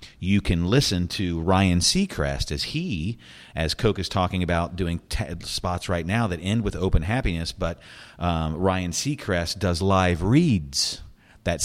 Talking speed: 160 wpm